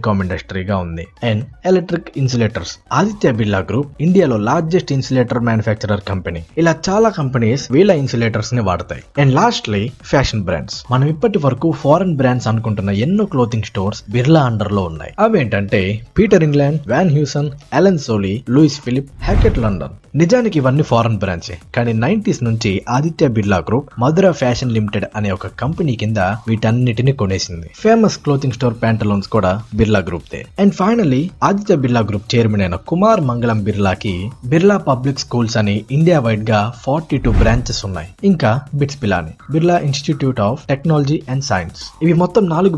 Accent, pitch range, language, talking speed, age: native, 105-150 Hz, Telugu, 135 wpm, 20-39